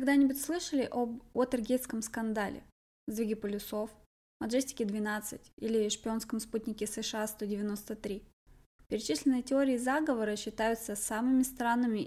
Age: 20-39